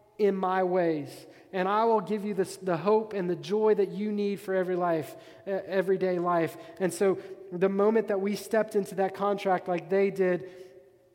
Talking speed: 195 wpm